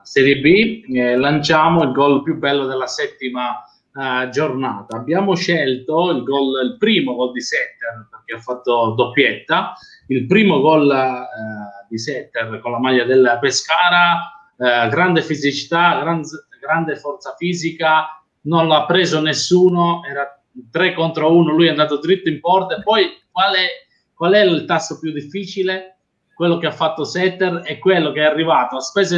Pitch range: 130-175 Hz